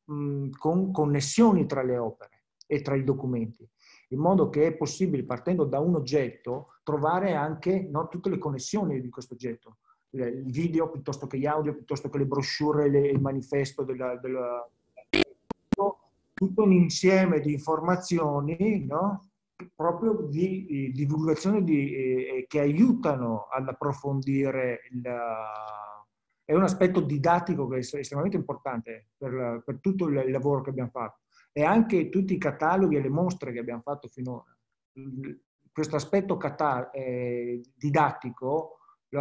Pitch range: 130-165 Hz